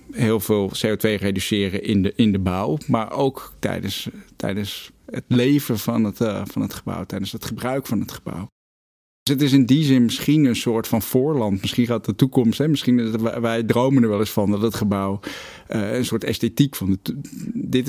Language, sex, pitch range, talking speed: Dutch, male, 105-125 Hz, 200 wpm